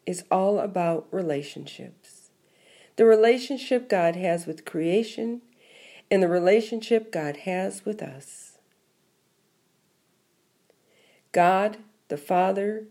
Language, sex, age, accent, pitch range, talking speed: English, female, 50-69, American, 170-225 Hz, 95 wpm